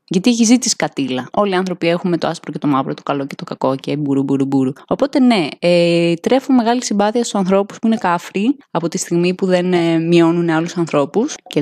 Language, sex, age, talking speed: Greek, female, 20-39, 200 wpm